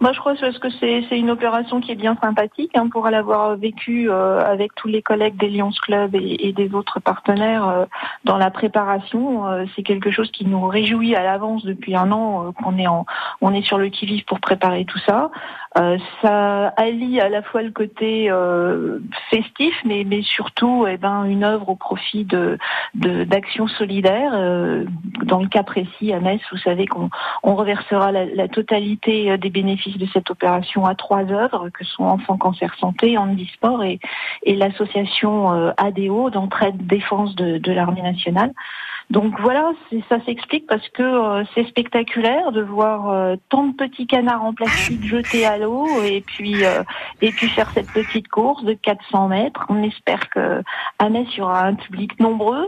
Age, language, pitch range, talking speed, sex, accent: 40-59, French, 195-225 Hz, 185 wpm, female, French